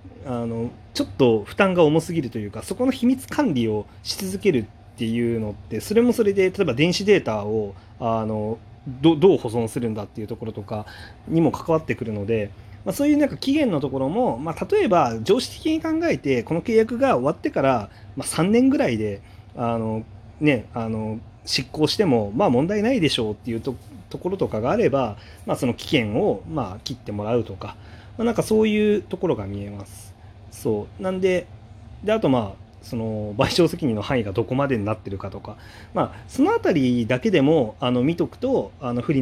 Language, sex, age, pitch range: Japanese, male, 30-49, 105-150 Hz